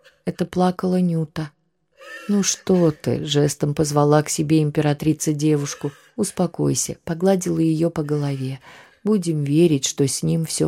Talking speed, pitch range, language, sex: 130 wpm, 145-175 Hz, Russian, female